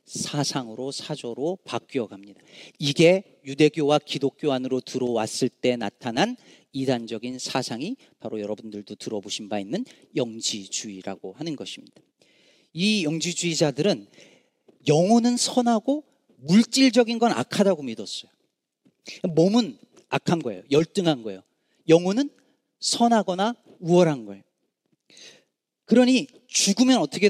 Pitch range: 130-205 Hz